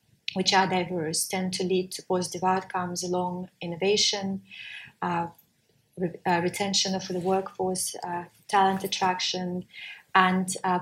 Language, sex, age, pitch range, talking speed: English, female, 20-39, 175-195 Hz, 120 wpm